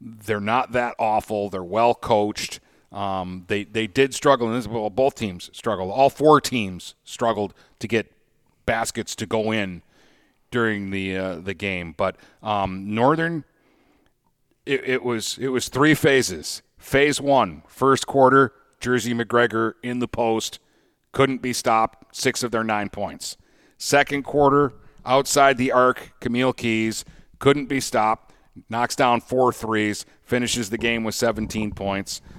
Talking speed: 145 wpm